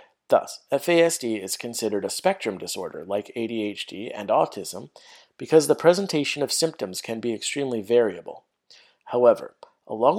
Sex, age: male, 40-59